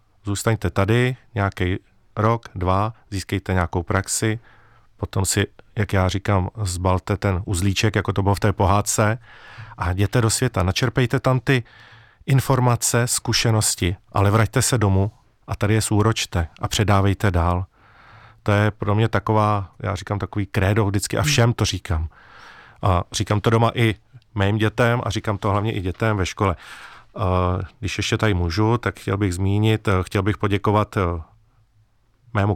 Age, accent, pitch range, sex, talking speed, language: 40-59, native, 95-115 Hz, male, 155 wpm, Czech